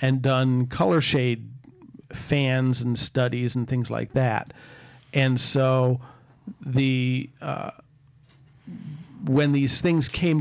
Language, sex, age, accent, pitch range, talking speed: English, male, 40-59, American, 125-140 Hz, 110 wpm